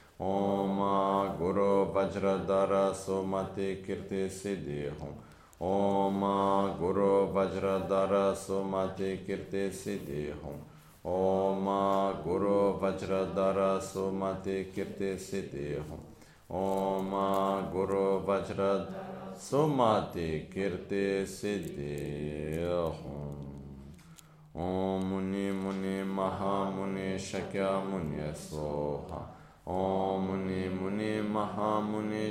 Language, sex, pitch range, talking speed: Italian, male, 90-100 Hz, 60 wpm